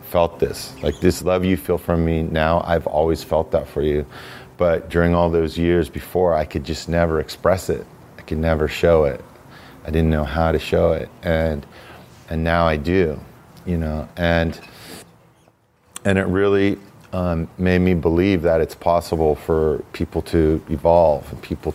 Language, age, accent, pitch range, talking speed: English, 40-59, American, 80-90 Hz, 175 wpm